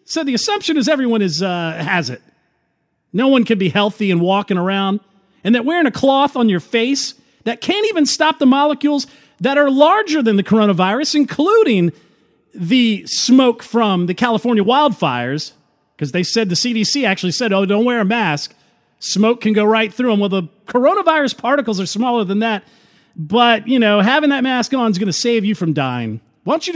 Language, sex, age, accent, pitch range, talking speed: English, male, 40-59, American, 160-245 Hz, 195 wpm